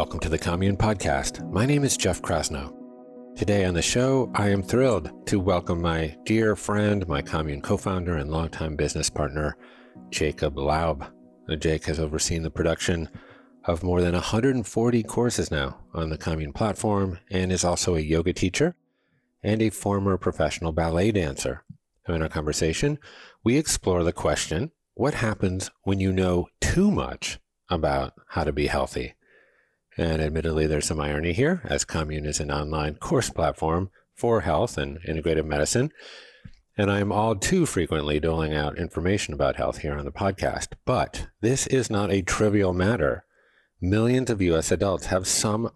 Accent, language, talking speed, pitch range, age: American, English, 160 wpm, 80-105 Hz, 40-59